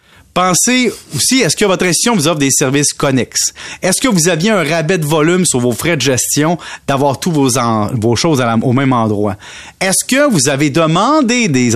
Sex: male